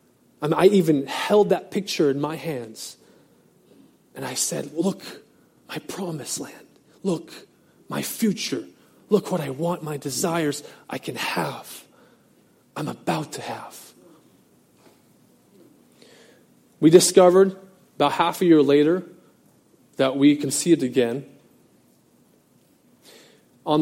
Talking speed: 115 wpm